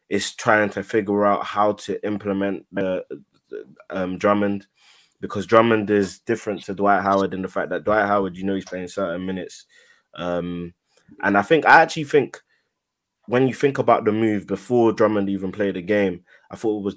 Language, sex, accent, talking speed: English, male, British, 185 wpm